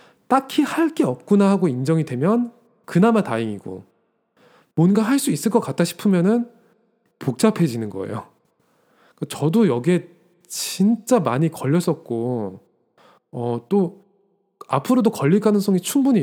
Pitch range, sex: 140-220 Hz, male